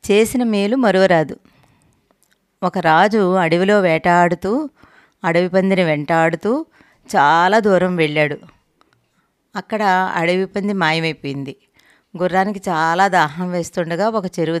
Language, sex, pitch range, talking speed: Telugu, female, 170-200 Hz, 100 wpm